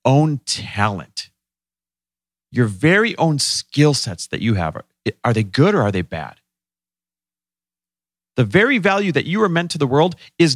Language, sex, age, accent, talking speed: English, male, 40-59, American, 160 wpm